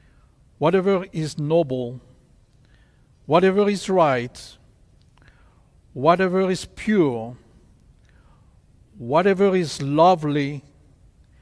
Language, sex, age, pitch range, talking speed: English, male, 60-79, 120-165 Hz, 65 wpm